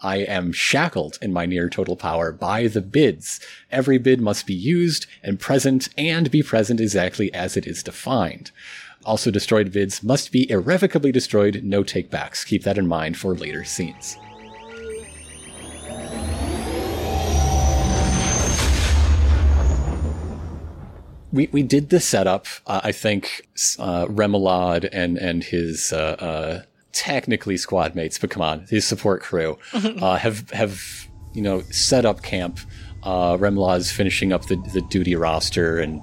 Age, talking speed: 30-49, 140 wpm